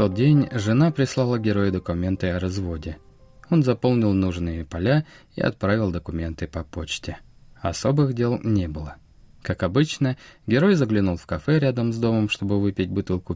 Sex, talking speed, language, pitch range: male, 155 wpm, Russian, 90-120 Hz